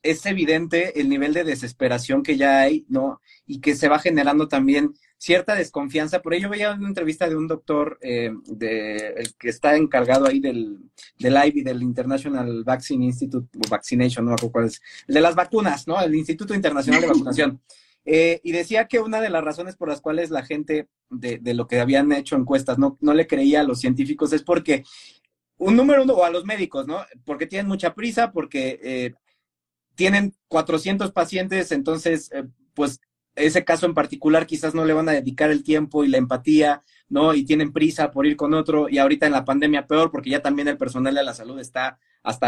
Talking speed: 200 wpm